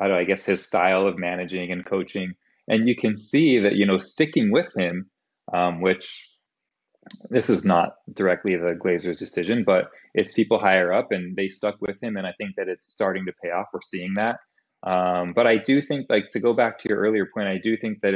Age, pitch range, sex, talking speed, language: 20-39, 95-110 Hz, male, 220 wpm, English